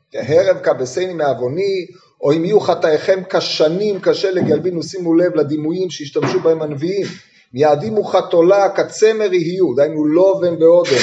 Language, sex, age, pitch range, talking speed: Hebrew, male, 30-49, 165-215 Hz, 125 wpm